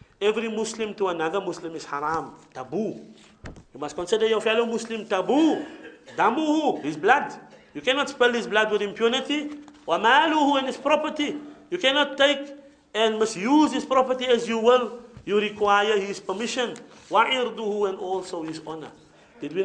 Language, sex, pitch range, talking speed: English, male, 185-235 Hz, 150 wpm